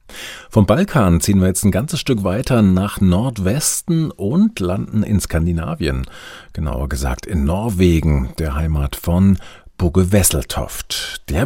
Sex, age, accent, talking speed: male, 50-69, German, 130 wpm